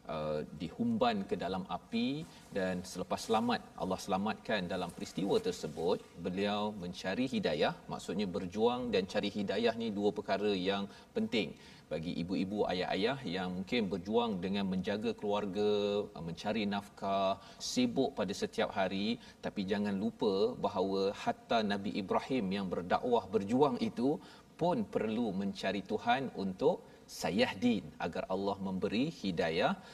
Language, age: Malayalam, 40-59